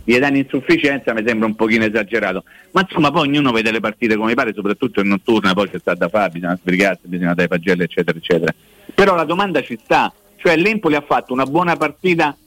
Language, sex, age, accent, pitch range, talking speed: Italian, male, 50-69, native, 110-150 Hz, 205 wpm